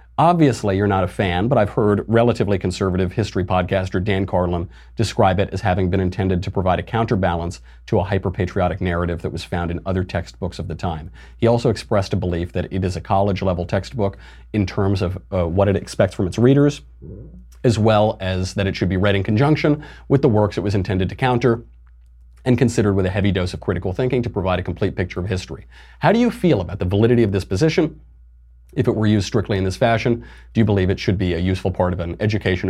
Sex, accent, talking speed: male, American, 225 wpm